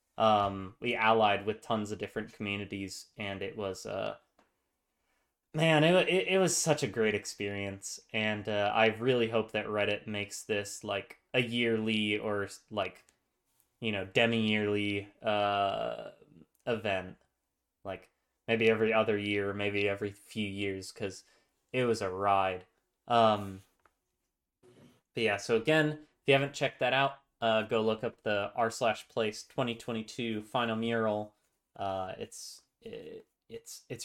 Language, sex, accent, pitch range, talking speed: English, male, American, 100-125 Hz, 145 wpm